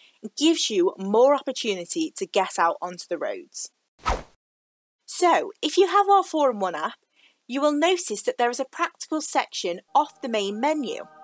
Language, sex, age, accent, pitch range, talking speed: English, female, 30-49, British, 205-310 Hz, 160 wpm